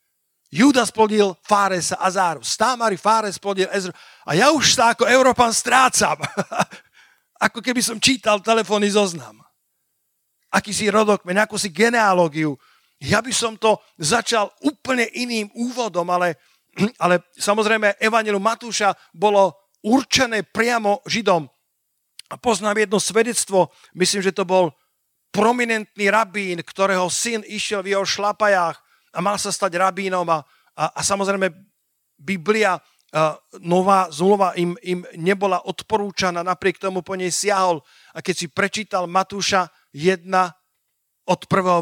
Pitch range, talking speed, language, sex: 180-215 Hz, 130 wpm, Slovak, male